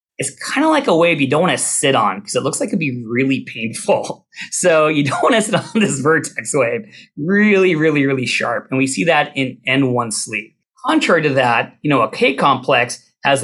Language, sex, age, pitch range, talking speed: English, male, 30-49, 125-160 Hz, 220 wpm